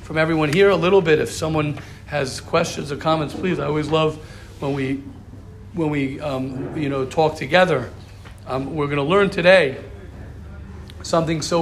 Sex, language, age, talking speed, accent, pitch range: male, English, 50-69, 170 wpm, American, 130-175 Hz